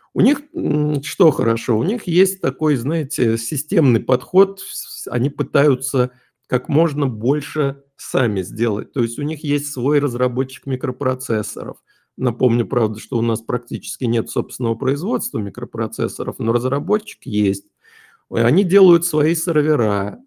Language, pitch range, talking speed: Russian, 115-155 Hz, 125 wpm